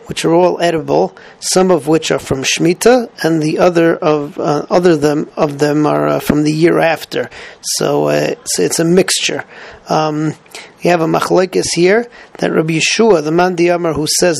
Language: English